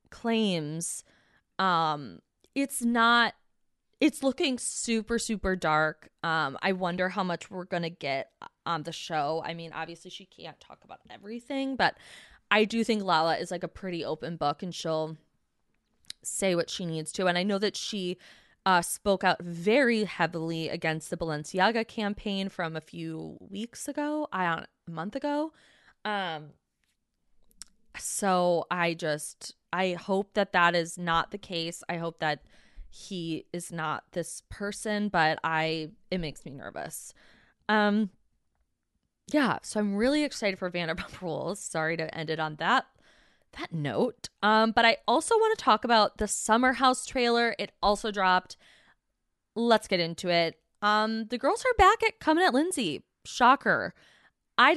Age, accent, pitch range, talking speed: 20-39, American, 165-225 Hz, 155 wpm